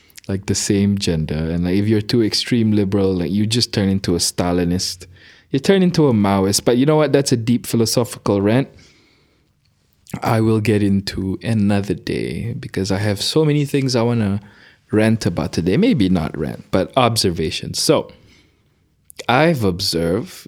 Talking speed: 170 wpm